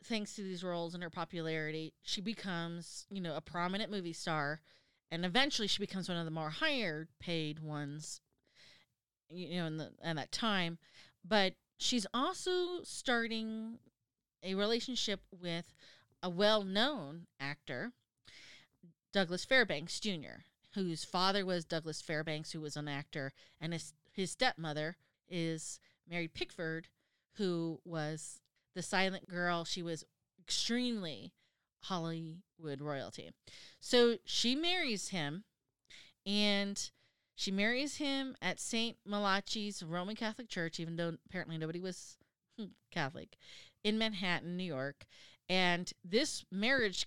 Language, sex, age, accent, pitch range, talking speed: English, female, 30-49, American, 160-210 Hz, 125 wpm